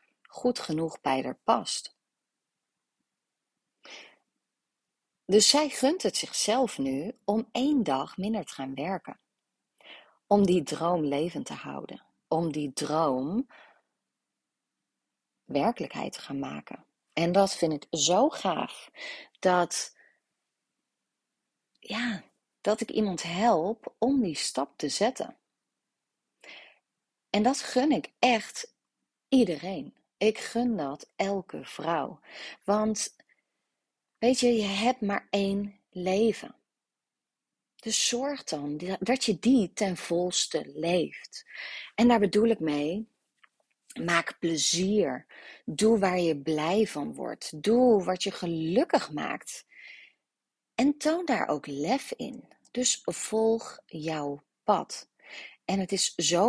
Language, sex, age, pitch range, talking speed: Dutch, female, 30-49, 165-240 Hz, 115 wpm